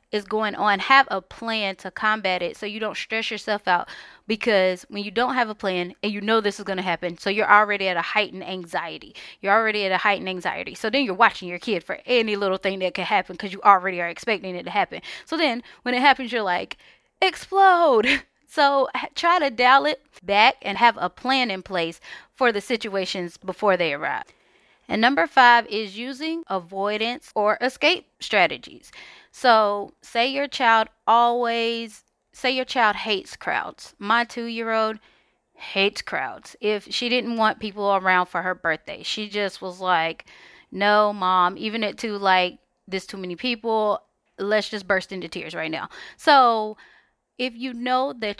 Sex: female